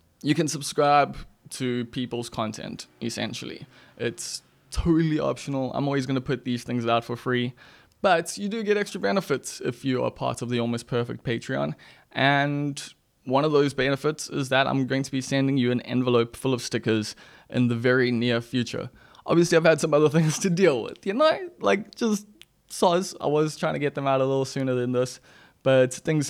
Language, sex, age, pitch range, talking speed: English, male, 20-39, 125-155 Hz, 195 wpm